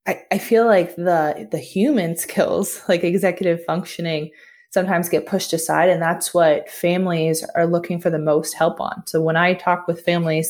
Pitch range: 155-180 Hz